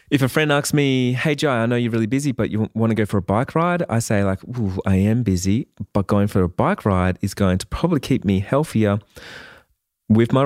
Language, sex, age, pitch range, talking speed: English, male, 20-39, 100-125 Hz, 245 wpm